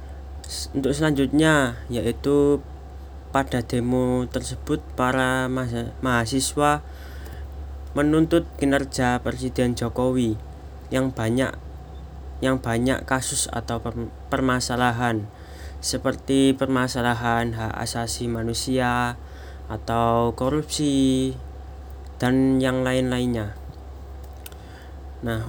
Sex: male